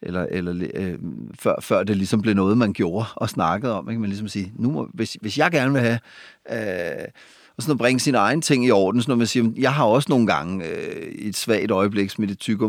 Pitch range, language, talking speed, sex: 110-145 Hz, Danish, 240 wpm, male